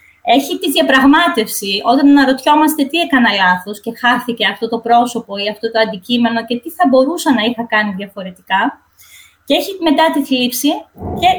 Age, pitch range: 20-39, 225-285 Hz